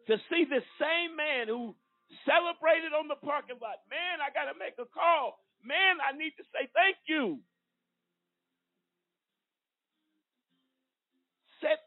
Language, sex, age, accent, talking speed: English, male, 50-69, American, 130 wpm